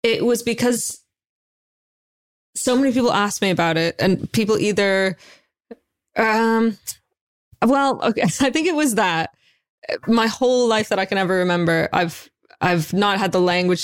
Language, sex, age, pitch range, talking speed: English, female, 20-39, 180-205 Hz, 150 wpm